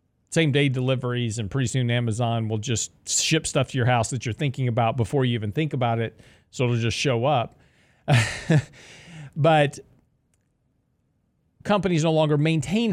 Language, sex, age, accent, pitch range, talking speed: English, male, 40-59, American, 130-165 Hz, 160 wpm